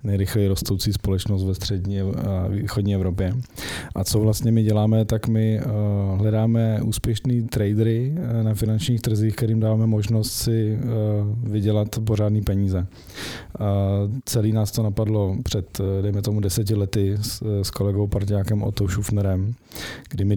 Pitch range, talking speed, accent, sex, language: 95-110 Hz, 130 wpm, native, male, Czech